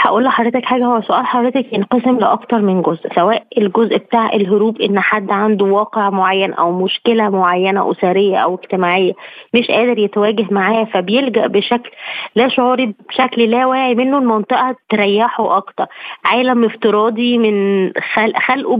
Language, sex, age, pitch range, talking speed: Arabic, female, 20-39, 210-255 Hz, 145 wpm